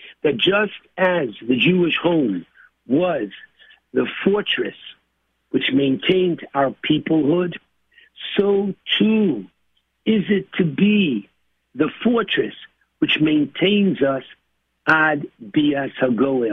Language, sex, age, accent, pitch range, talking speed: English, male, 60-79, American, 150-200 Hz, 95 wpm